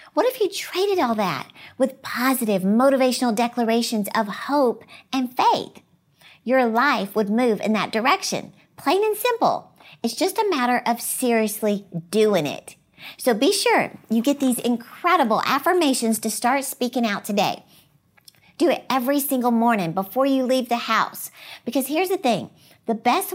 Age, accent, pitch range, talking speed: 50-69, American, 215-270 Hz, 155 wpm